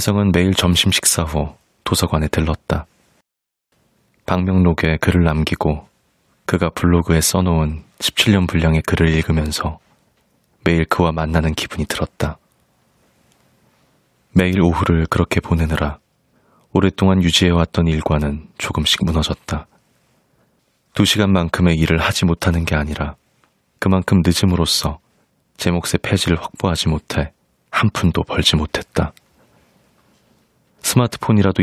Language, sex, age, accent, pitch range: Korean, male, 30-49, native, 80-95 Hz